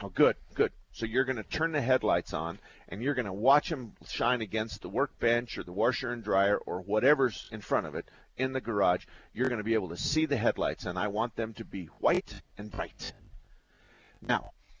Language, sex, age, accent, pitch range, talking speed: English, male, 50-69, American, 105-135 Hz, 220 wpm